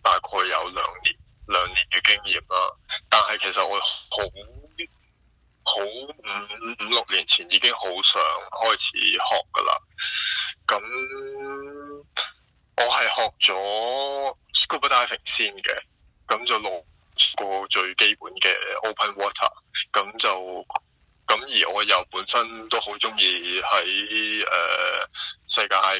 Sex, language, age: male, English, 20-39